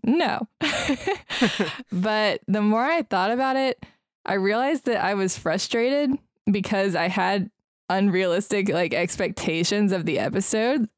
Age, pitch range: 20-39, 175-215 Hz